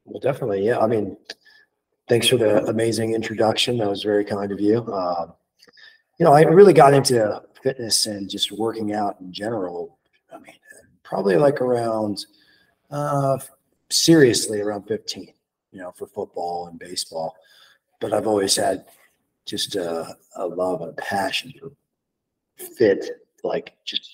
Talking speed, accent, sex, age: 150 wpm, American, male, 40-59